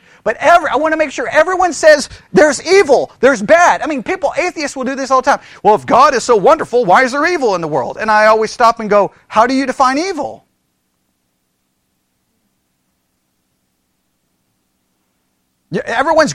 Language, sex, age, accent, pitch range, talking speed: English, male, 40-59, American, 185-275 Hz, 175 wpm